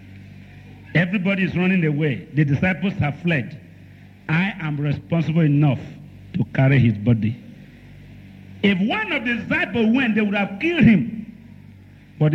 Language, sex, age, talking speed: English, male, 50-69, 135 wpm